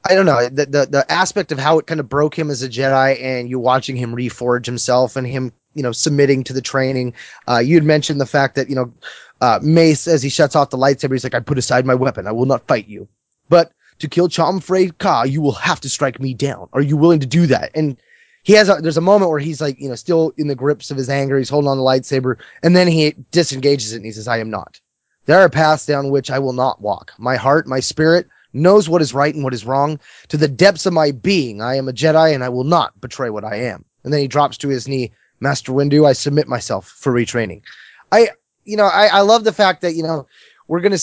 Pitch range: 130-160 Hz